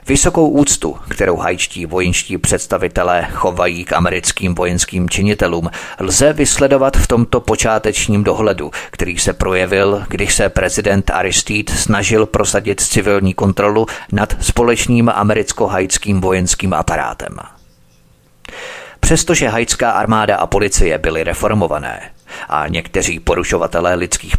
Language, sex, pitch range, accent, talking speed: Czech, male, 95-130 Hz, native, 110 wpm